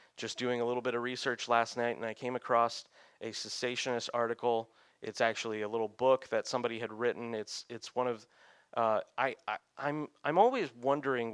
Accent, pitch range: American, 115-135 Hz